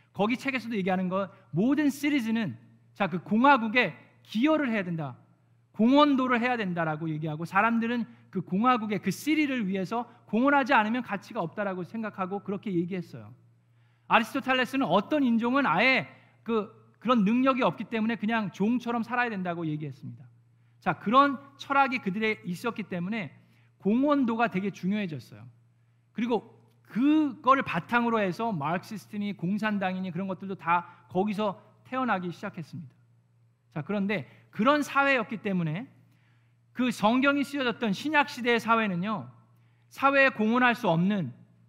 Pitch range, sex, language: 145-245 Hz, male, Korean